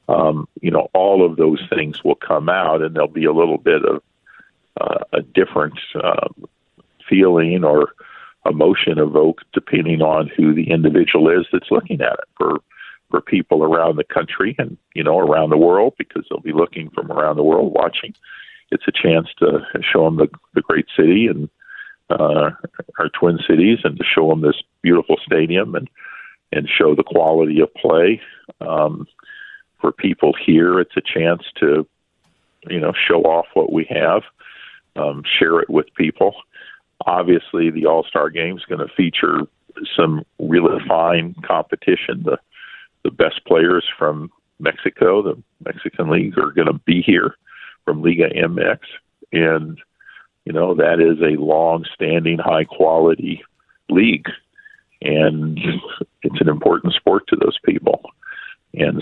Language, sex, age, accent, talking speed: English, male, 50-69, American, 160 wpm